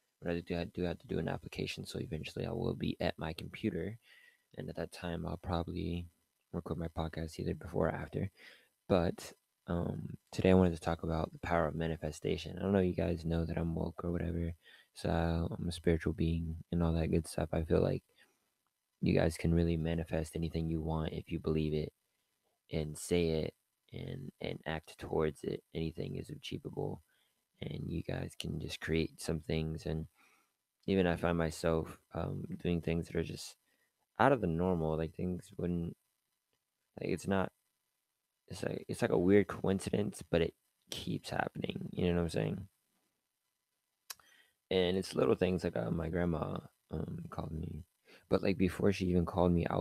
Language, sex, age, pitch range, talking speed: English, male, 20-39, 80-85 Hz, 185 wpm